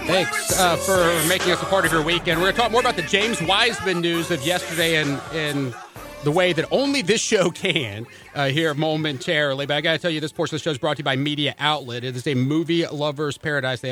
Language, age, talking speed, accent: English, 40-59, 255 wpm, American